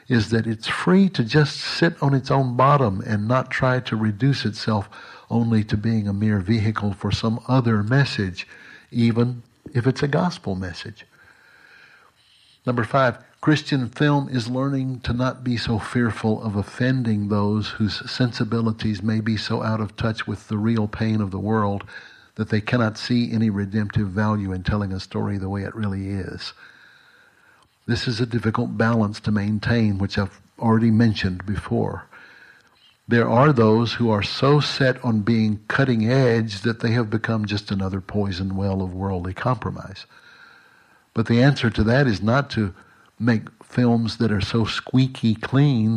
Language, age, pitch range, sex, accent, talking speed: English, 60-79, 105-125 Hz, male, American, 165 wpm